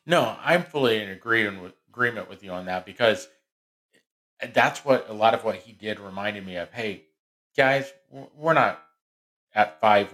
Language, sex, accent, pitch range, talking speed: English, male, American, 100-140 Hz, 160 wpm